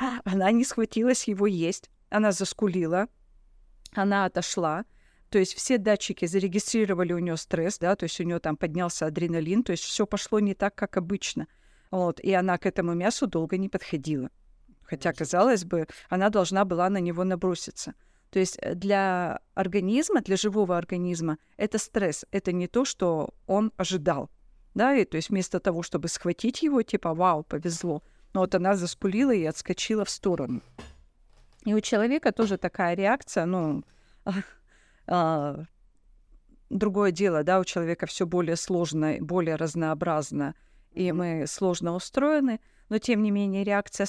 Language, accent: Russian, native